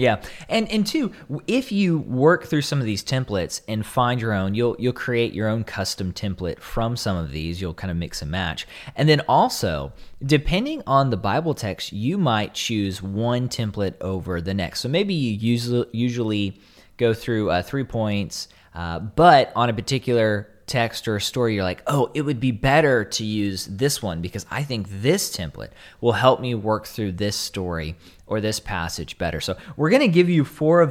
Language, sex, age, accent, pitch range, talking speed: English, male, 20-39, American, 100-150 Hz, 195 wpm